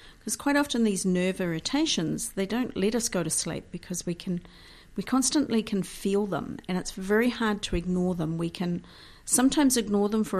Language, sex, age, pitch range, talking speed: English, female, 50-69, 170-210 Hz, 195 wpm